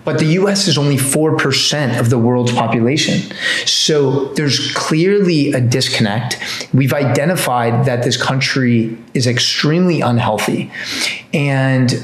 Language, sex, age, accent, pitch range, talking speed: English, male, 20-39, American, 120-145 Hz, 120 wpm